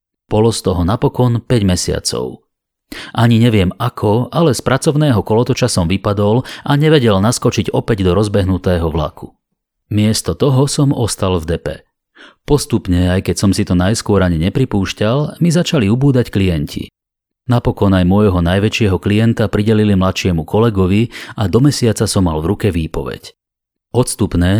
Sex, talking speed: male, 140 wpm